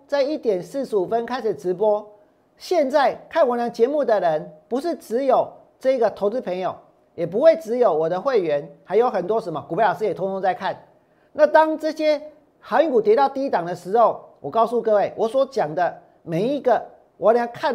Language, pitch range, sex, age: Chinese, 200-280 Hz, male, 40-59